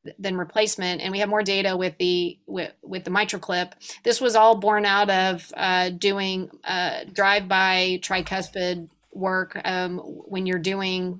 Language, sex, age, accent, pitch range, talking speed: English, female, 30-49, American, 180-205 Hz, 160 wpm